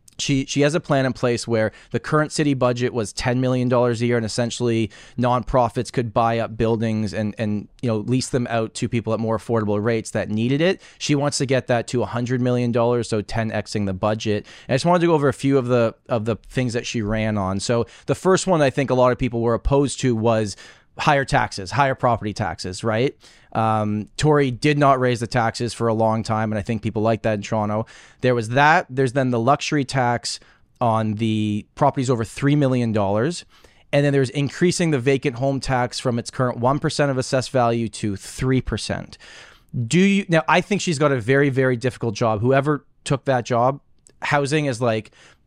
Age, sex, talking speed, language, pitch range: 20-39, male, 220 wpm, English, 115-140 Hz